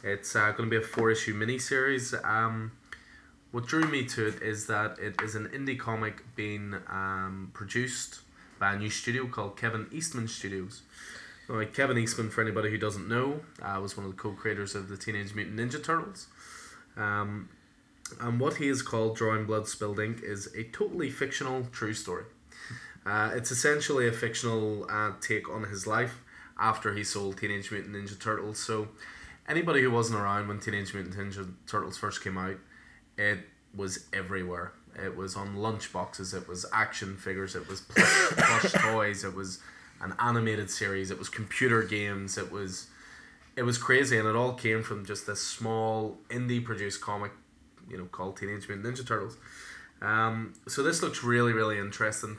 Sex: male